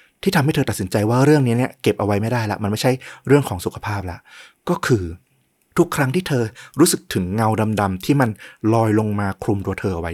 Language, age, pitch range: Thai, 30-49, 100-135 Hz